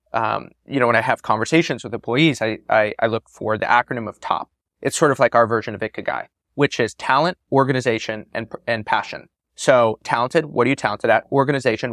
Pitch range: 115-145 Hz